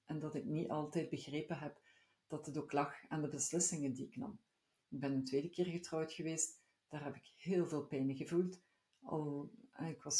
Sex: female